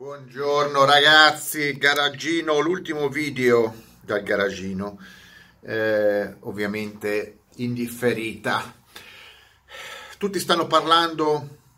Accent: native